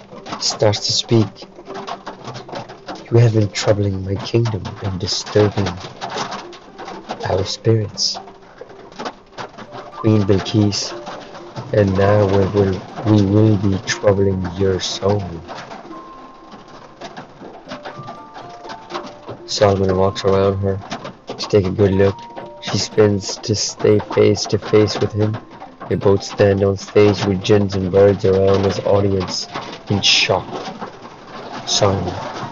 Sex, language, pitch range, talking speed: male, English, 95-105 Hz, 110 wpm